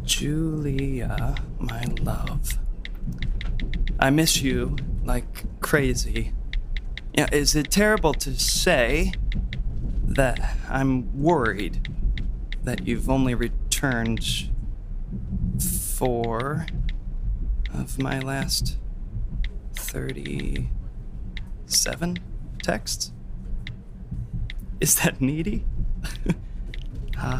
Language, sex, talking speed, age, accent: English, male, 70 wpm, 20-39, American